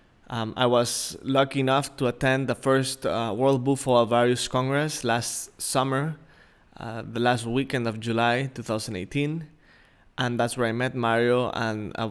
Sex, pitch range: male, 115-135 Hz